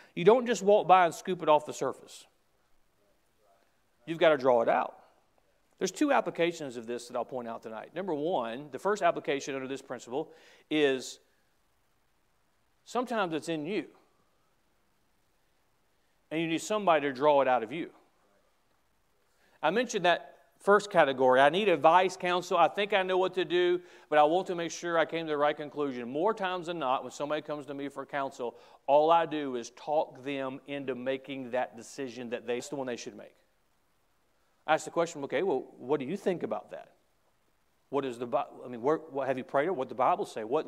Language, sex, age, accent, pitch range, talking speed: English, male, 40-59, American, 145-195 Hz, 200 wpm